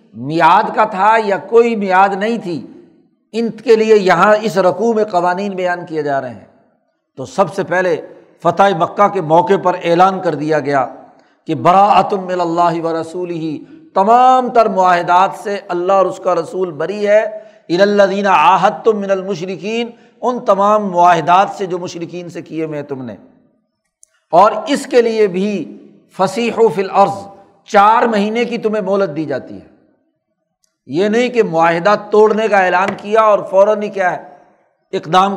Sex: male